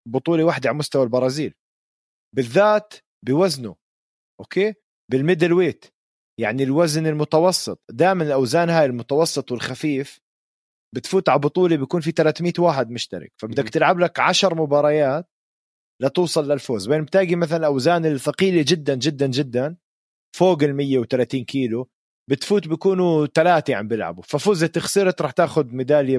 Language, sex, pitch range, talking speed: Arabic, male, 125-165 Hz, 130 wpm